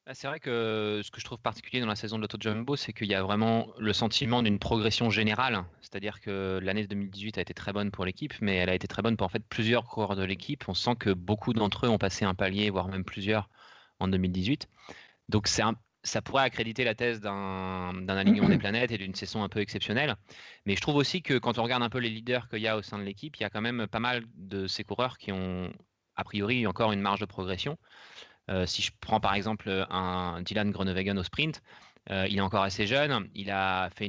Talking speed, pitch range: 245 wpm, 100-115 Hz